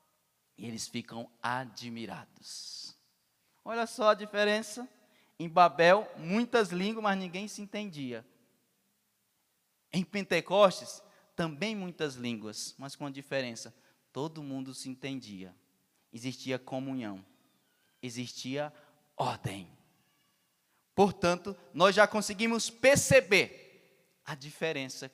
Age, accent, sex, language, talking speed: 20-39, Brazilian, male, Portuguese, 95 wpm